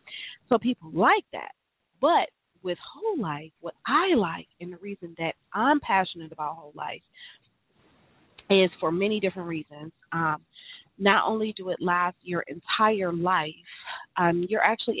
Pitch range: 160-190 Hz